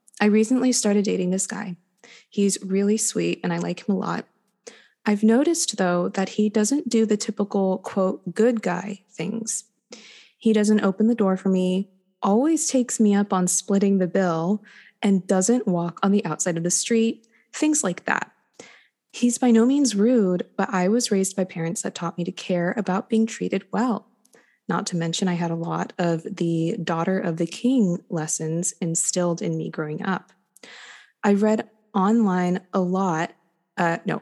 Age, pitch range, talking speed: 20-39, 180-220 Hz, 175 wpm